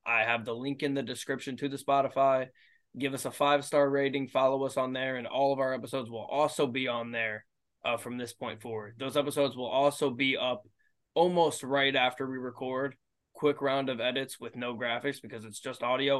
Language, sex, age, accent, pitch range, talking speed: English, male, 20-39, American, 115-140 Hz, 210 wpm